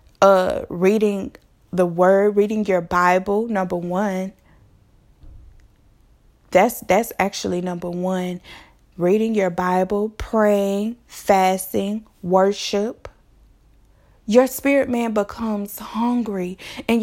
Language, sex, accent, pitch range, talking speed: English, female, American, 185-215 Hz, 90 wpm